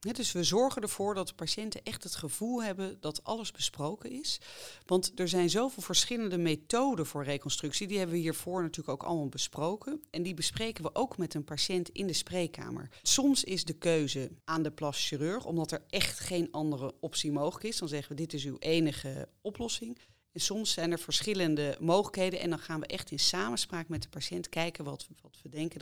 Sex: female